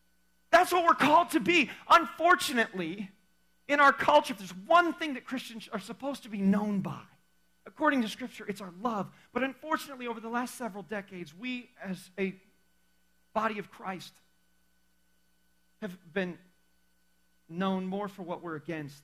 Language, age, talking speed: English, 40-59, 155 wpm